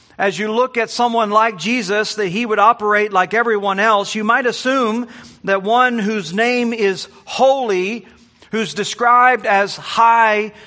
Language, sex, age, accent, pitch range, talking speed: English, male, 40-59, American, 200-240 Hz, 150 wpm